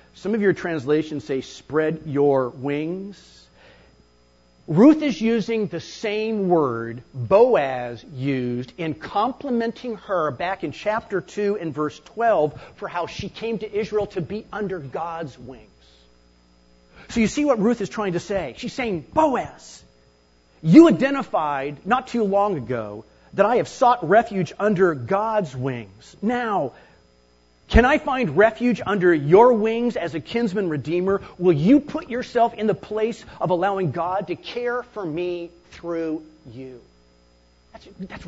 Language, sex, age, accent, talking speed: English, male, 40-59, American, 145 wpm